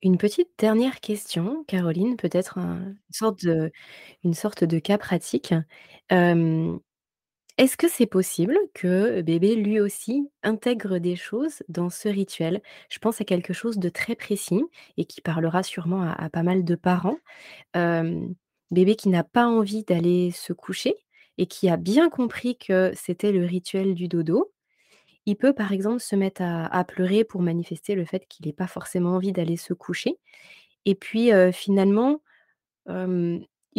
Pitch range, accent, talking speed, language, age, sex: 175-220 Hz, French, 160 wpm, French, 20-39, female